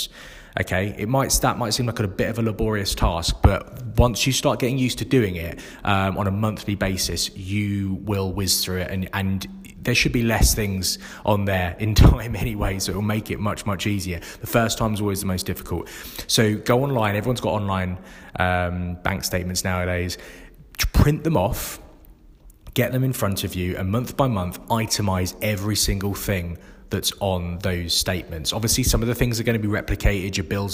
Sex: male